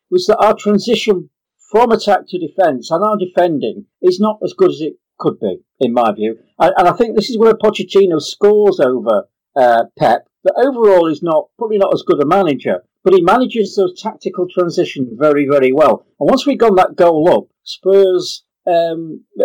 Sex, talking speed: male, 190 wpm